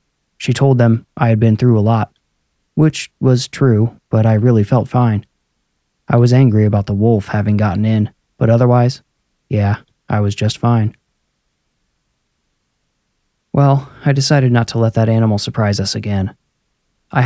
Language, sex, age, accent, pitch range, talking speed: English, male, 20-39, American, 105-120 Hz, 155 wpm